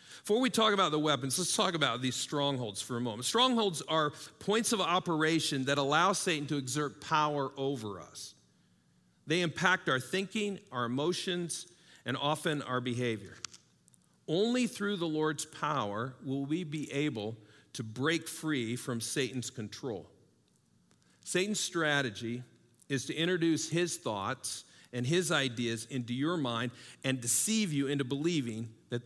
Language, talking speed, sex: English, 145 wpm, male